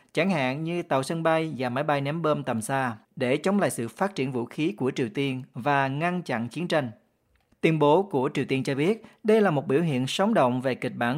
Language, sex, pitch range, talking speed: Vietnamese, male, 135-175 Hz, 245 wpm